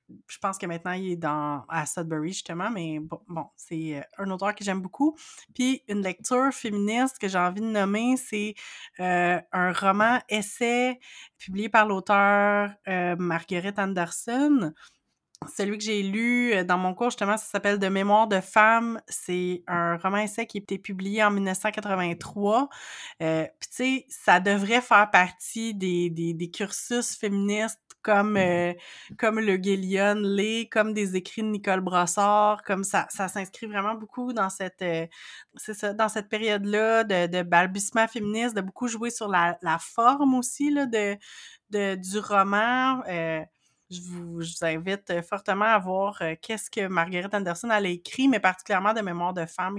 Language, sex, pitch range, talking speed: French, female, 185-220 Hz, 170 wpm